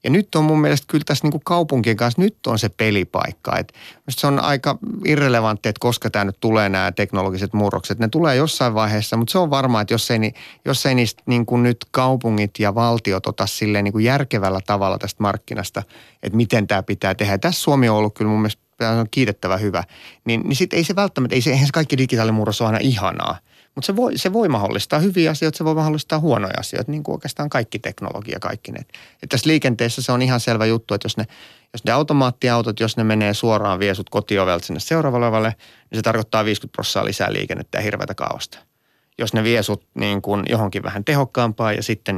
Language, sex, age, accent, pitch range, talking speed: Finnish, male, 30-49, native, 105-130 Hz, 205 wpm